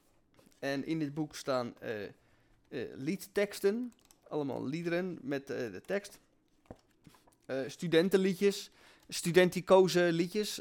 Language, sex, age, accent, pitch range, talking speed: Dutch, male, 20-39, Dutch, 155-200 Hz, 95 wpm